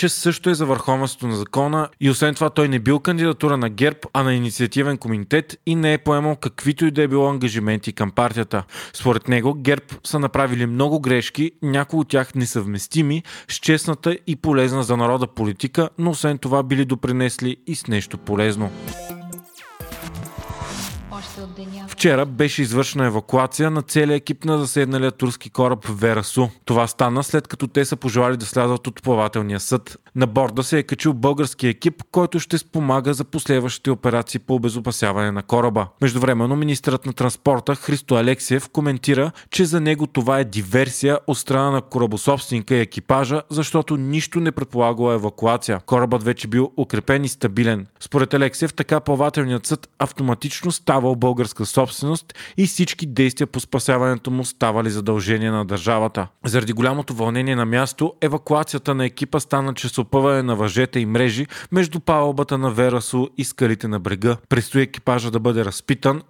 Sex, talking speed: male, 160 wpm